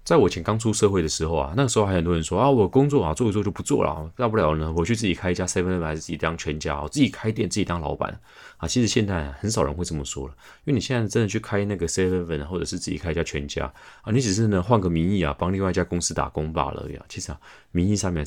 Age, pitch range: 30-49, 80-105 Hz